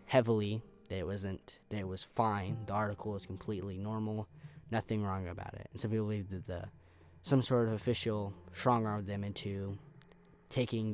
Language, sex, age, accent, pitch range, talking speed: English, male, 10-29, American, 90-110 Hz, 170 wpm